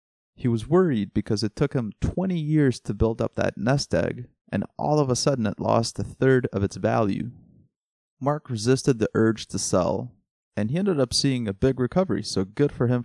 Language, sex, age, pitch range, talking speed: English, male, 20-39, 100-135 Hz, 205 wpm